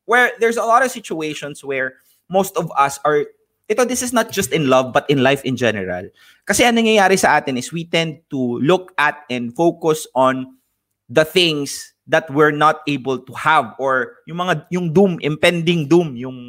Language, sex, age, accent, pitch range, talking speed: English, male, 20-39, Filipino, 125-185 Hz, 190 wpm